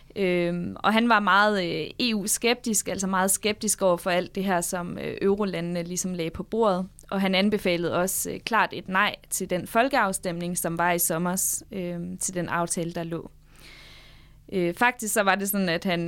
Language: Danish